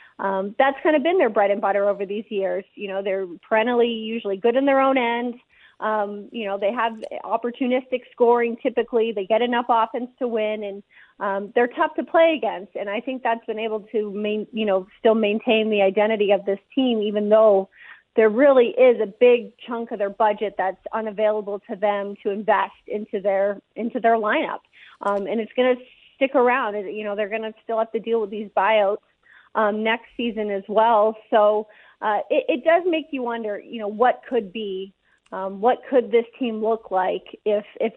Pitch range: 205-240 Hz